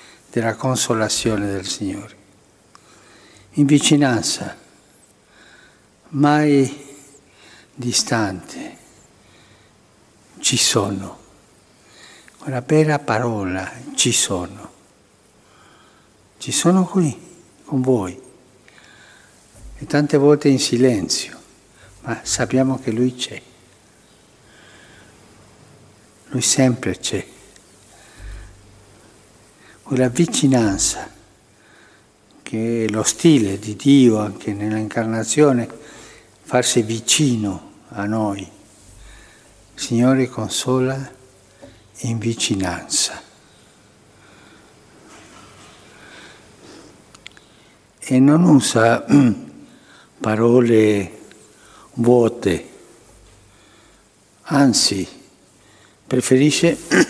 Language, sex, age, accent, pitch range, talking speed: Italian, male, 60-79, native, 105-135 Hz, 65 wpm